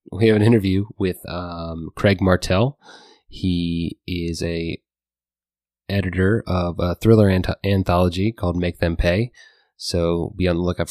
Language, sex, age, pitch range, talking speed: English, male, 20-39, 85-105 Hz, 140 wpm